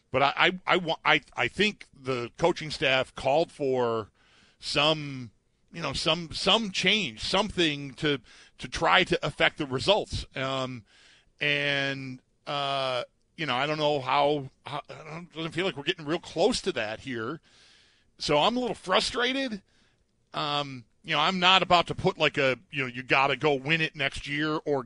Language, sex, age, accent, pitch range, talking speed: English, male, 50-69, American, 140-200 Hz, 175 wpm